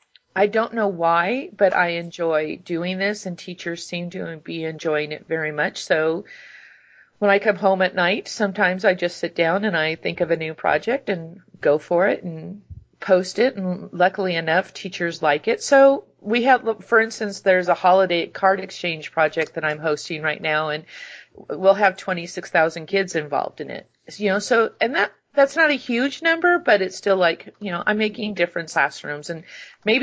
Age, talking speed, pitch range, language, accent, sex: 40-59, 190 wpm, 165-200 Hz, English, American, female